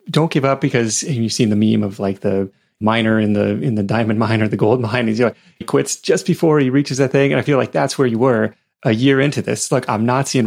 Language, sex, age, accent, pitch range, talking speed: English, male, 30-49, American, 110-145 Hz, 285 wpm